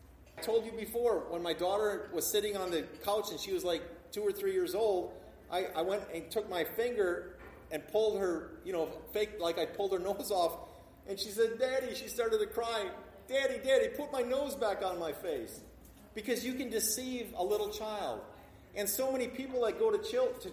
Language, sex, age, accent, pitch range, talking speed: English, male, 40-59, American, 185-260 Hz, 215 wpm